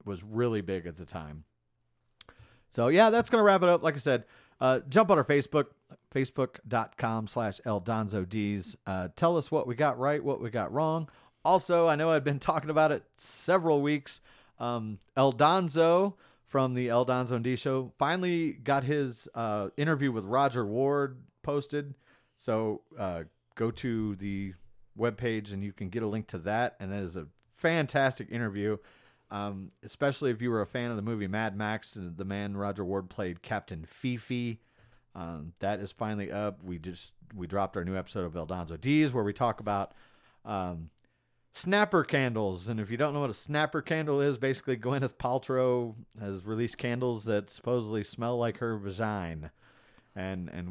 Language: English